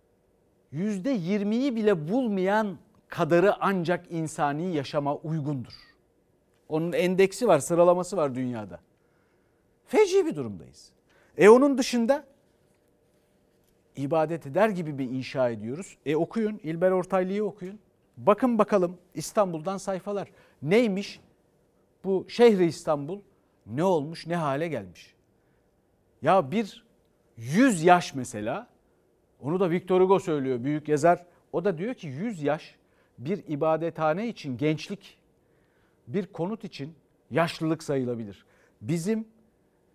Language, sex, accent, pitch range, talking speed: Turkish, male, native, 145-195 Hz, 110 wpm